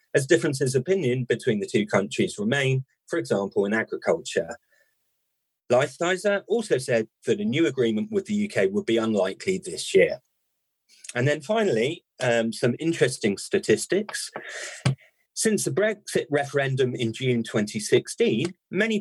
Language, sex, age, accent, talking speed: English, male, 40-59, British, 135 wpm